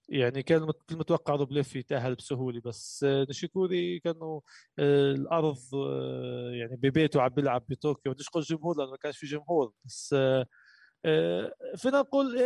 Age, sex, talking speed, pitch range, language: 20-39, male, 125 wpm, 125-170 Hz, Arabic